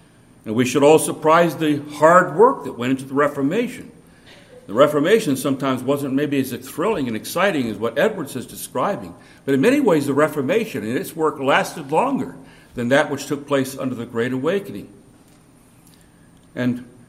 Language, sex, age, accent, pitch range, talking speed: English, male, 60-79, American, 125-160 Hz, 170 wpm